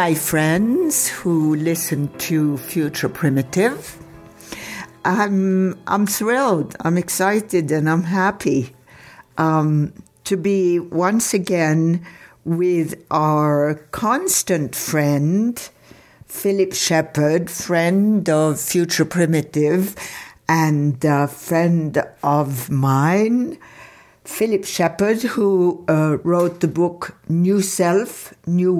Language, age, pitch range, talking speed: English, 60-79, 155-190 Hz, 95 wpm